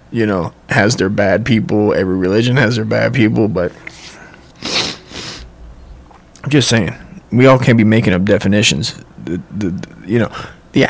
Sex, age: male, 20-39